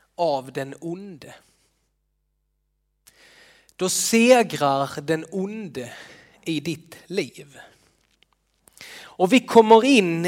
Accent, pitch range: native, 160-215 Hz